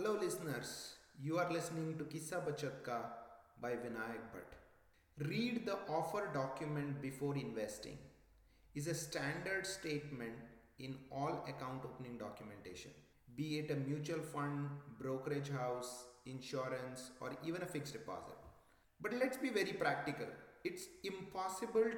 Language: English